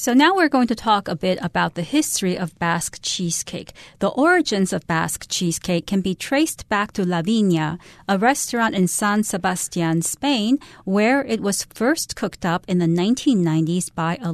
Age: 40-59